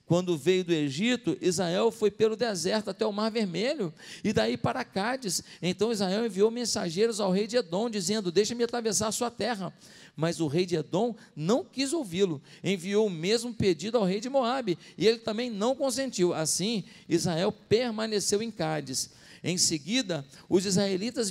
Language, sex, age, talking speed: Portuguese, male, 50-69, 165 wpm